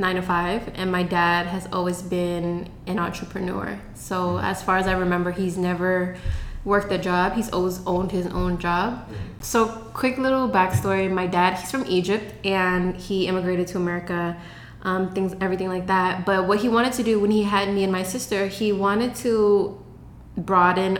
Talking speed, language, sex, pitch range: 185 wpm, English, female, 180-205 Hz